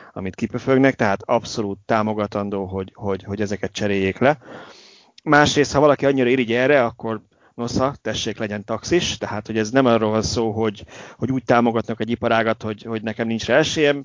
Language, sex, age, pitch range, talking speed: Hungarian, male, 30-49, 100-120 Hz, 175 wpm